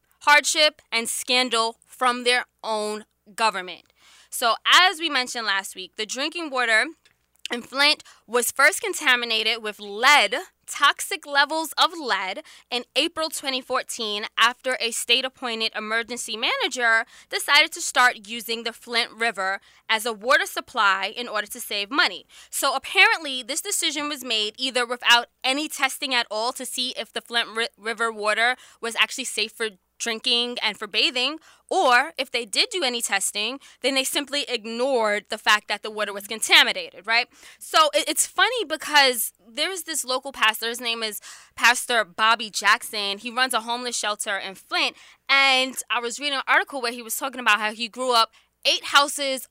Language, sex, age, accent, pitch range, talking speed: English, female, 20-39, American, 225-285 Hz, 165 wpm